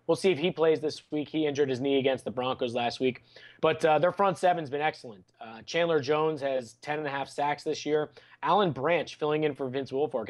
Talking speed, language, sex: 240 wpm, English, male